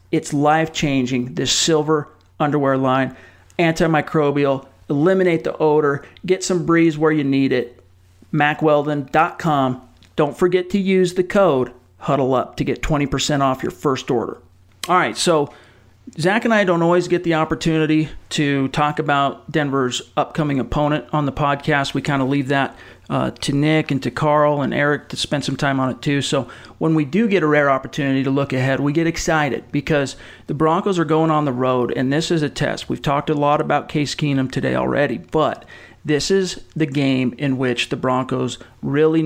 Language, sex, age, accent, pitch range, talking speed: English, male, 40-59, American, 135-155 Hz, 180 wpm